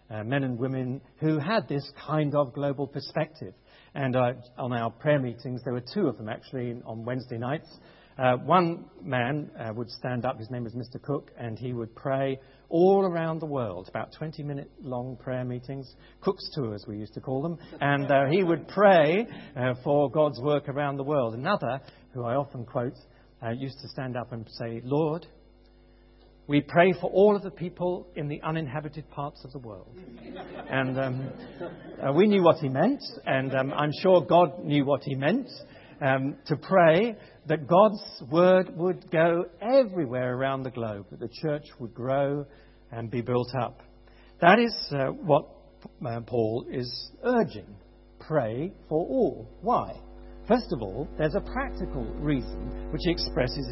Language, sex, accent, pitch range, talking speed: English, male, British, 120-155 Hz, 175 wpm